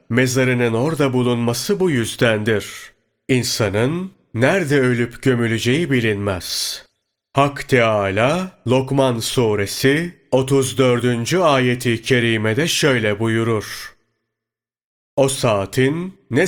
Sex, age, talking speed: male, 40-59, 85 wpm